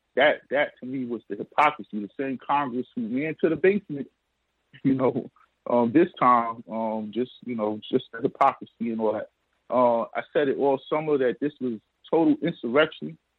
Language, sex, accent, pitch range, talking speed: English, male, American, 125-160 Hz, 185 wpm